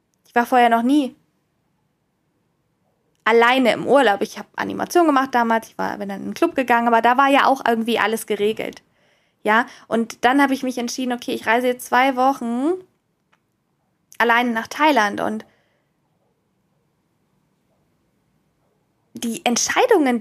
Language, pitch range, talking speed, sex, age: German, 225-285 Hz, 145 wpm, female, 10-29